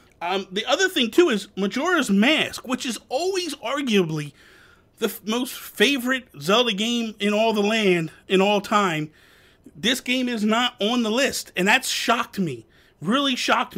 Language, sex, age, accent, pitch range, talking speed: English, male, 30-49, American, 165-225 Hz, 160 wpm